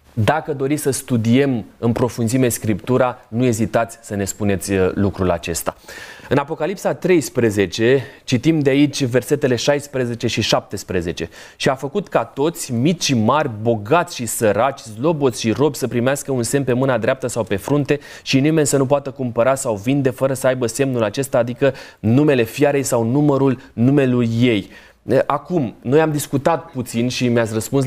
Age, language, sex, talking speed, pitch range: 20-39, Romanian, male, 165 wpm, 120-155 Hz